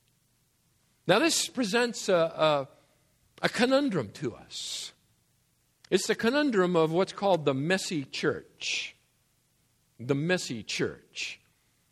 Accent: American